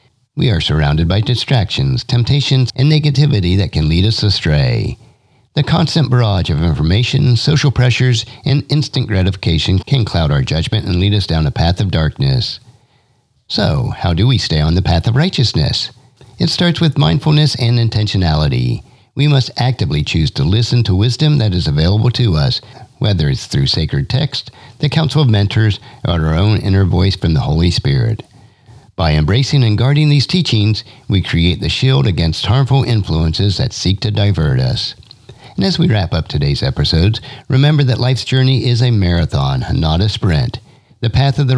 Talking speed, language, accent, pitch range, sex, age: 175 wpm, English, American, 95-135 Hz, male, 50-69